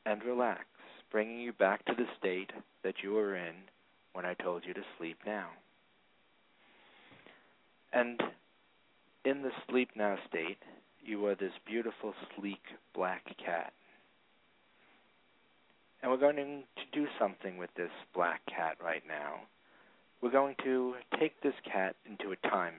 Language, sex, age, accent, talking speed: English, male, 40-59, American, 140 wpm